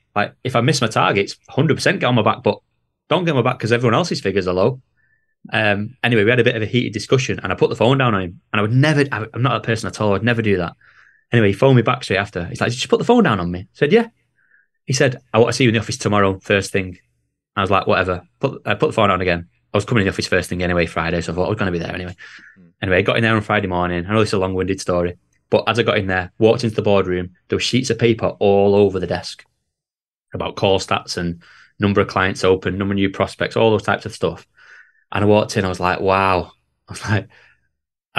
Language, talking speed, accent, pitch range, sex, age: English, 285 wpm, British, 90-110 Hz, male, 20-39